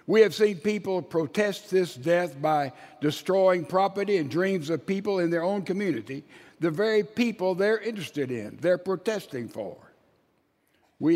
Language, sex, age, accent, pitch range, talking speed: English, male, 60-79, American, 160-190 Hz, 150 wpm